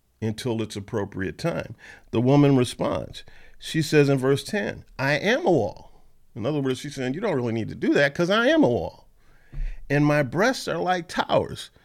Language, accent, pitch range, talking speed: English, American, 115-155 Hz, 195 wpm